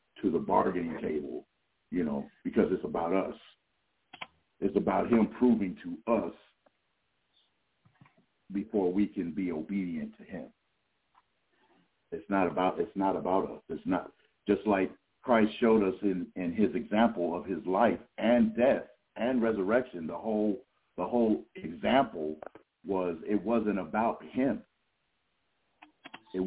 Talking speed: 135 wpm